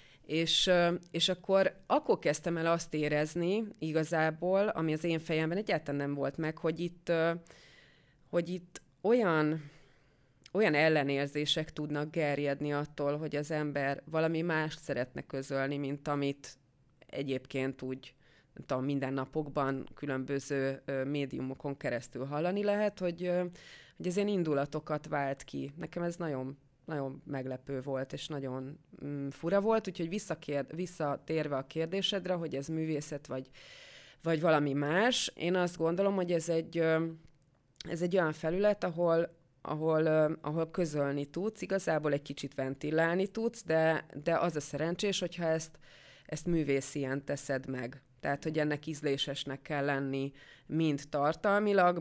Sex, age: female, 30-49